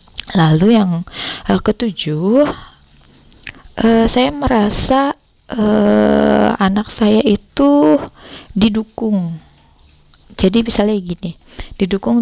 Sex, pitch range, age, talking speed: female, 165-210 Hz, 20-39, 75 wpm